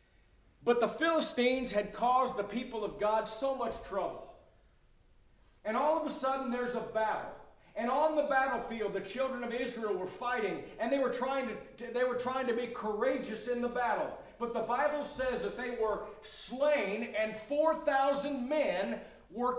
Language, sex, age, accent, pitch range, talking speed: English, male, 40-59, American, 195-270 Hz, 160 wpm